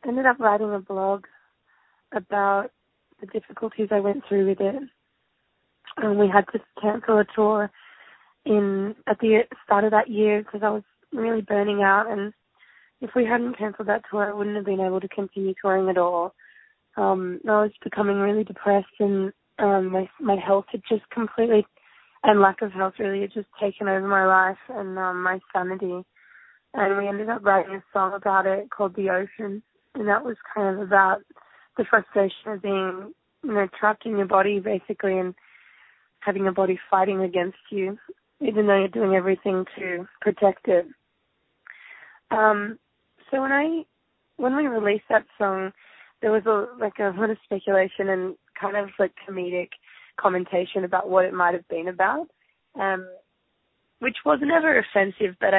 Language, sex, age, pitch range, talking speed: English, female, 20-39, 190-215 Hz, 170 wpm